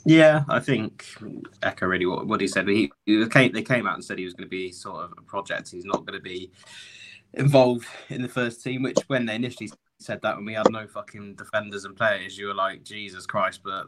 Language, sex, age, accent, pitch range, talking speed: English, male, 20-39, British, 100-115 Hz, 235 wpm